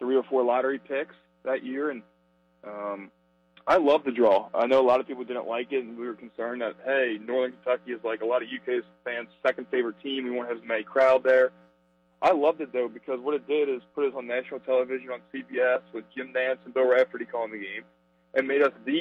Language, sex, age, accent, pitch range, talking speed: English, male, 20-39, American, 115-135 Hz, 245 wpm